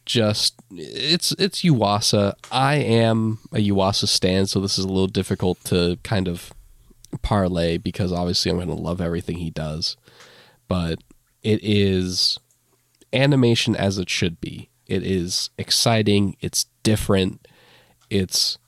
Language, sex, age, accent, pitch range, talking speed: English, male, 20-39, American, 90-115 Hz, 135 wpm